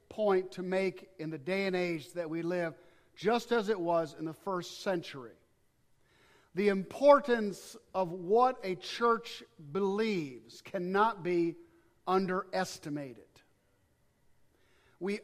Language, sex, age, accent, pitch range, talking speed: English, male, 50-69, American, 190-255 Hz, 120 wpm